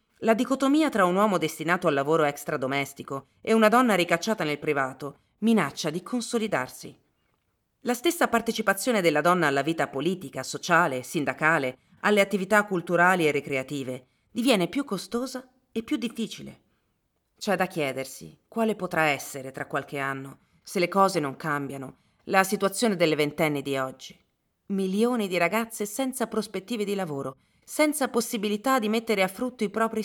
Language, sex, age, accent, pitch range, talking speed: Italian, female, 40-59, native, 155-225 Hz, 150 wpm